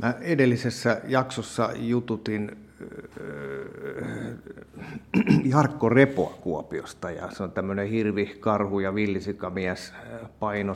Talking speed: 95 wpm